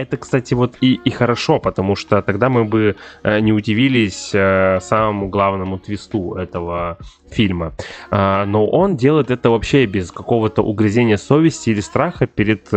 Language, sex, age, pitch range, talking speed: Russian, male, 20-39, 95-115 Hz, 140 wpm